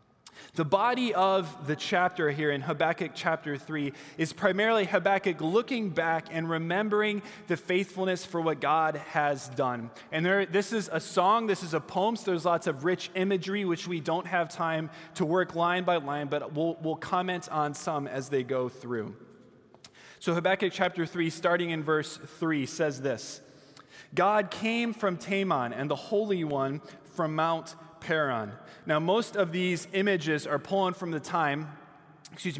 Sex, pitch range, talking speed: male, 150-185 Hz, 170 wpm